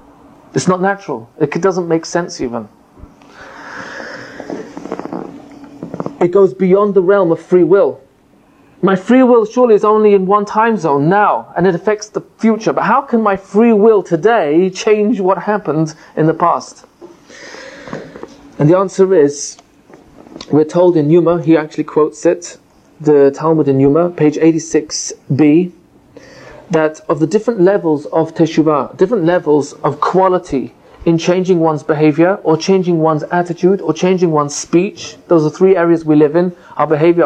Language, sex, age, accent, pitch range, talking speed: English, male, 30-49, British, 155-195 Hz, 155 wpm